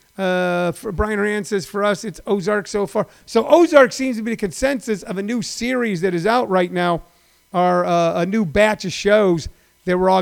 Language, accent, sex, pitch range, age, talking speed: English, American, male, 170-205 Hz, 50-69, 215 wpm